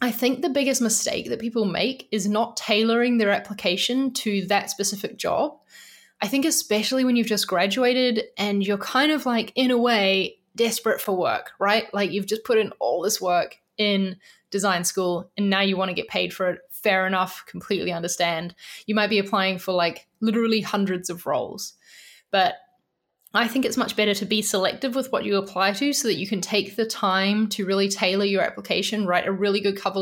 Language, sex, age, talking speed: English, female, 10-29, 200 wpm